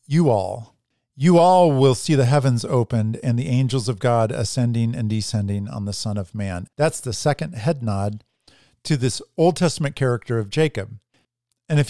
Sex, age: male, 50-69